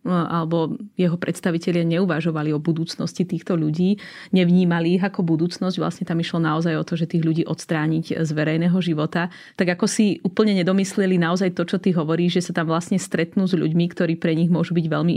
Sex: female